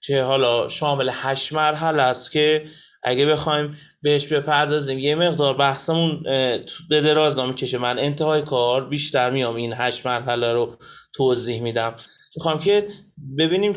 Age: 30-49